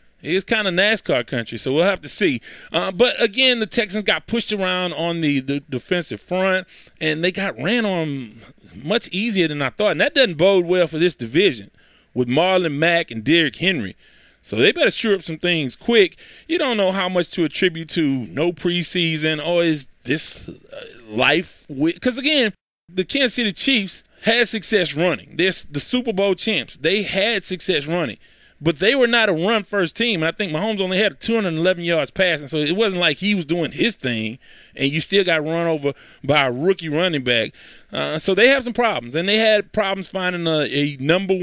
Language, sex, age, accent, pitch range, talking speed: English, male, 20-39, American, 160-215 Hz, 200 wpm